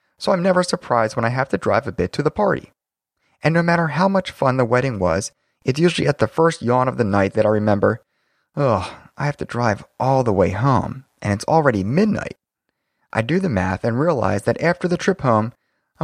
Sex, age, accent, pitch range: male, 30-49, American, 115-175 Hz